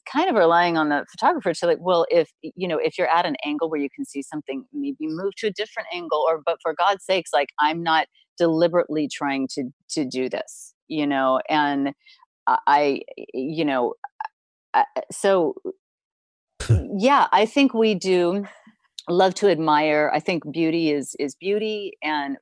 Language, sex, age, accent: English, female, 40-59, American